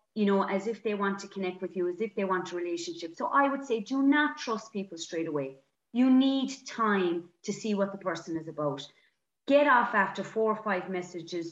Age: 30-49